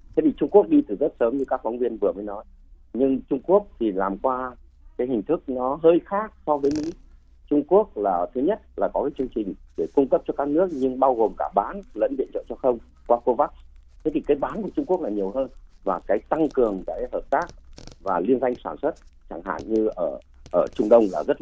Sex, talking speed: male, 250 wpm